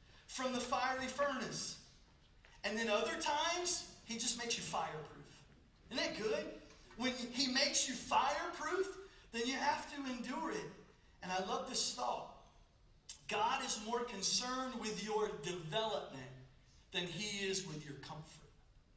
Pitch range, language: 195-270 Hz, English